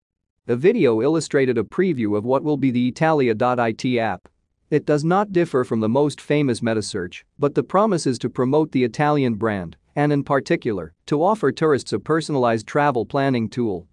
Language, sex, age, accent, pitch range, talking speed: English, male, 40-59, American, 115-150 Hz, 175 wpm